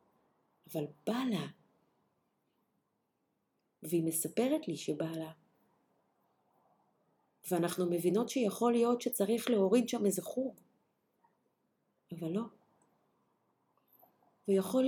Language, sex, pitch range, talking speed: Hebrew, female, 160-235 Hz, 80 wpm